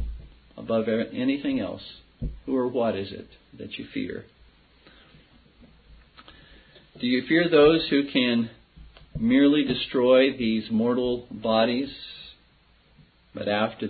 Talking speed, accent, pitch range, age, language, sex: 105 wpm, American, 95-125 Hz, 50-69, English, male